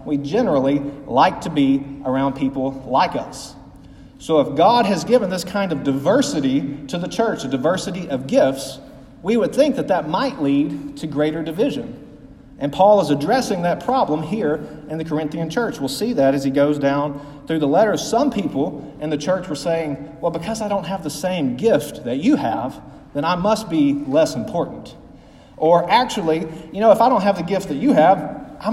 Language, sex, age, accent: English, male, 40-59, American